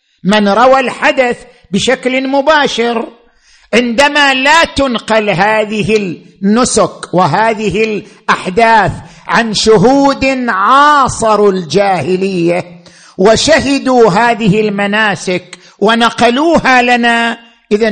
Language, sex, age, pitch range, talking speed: Arabic, male, 50-69, 185-245 Hz, 75 wpm